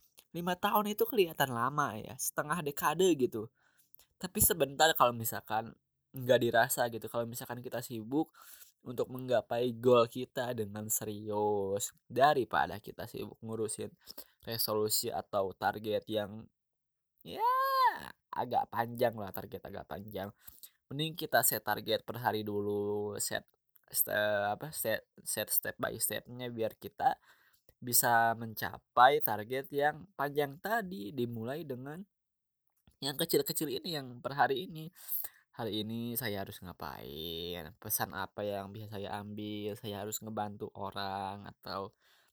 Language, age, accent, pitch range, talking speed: Indonesian, 10-29, native, 105-135 Hz, 125 wpm